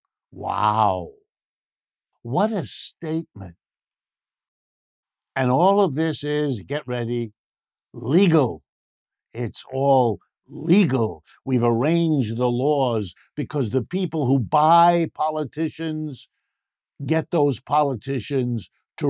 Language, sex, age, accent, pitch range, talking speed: English, male, 60-79, American, 115-145 Hz, 90 wpm